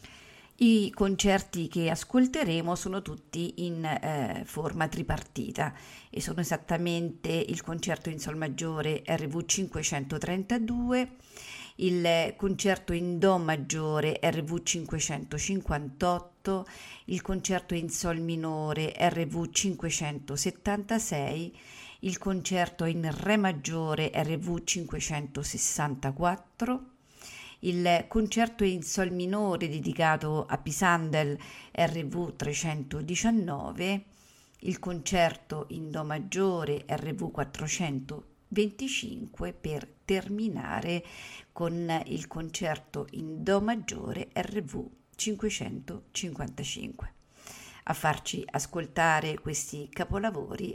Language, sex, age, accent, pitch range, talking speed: Italian, female, 40-59, native, 155-195 Hz, 85 wpm